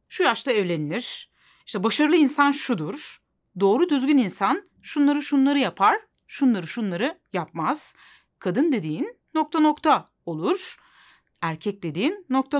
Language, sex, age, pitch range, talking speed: Turkish, female, 30-49, 195-300 Hz, 110 wpm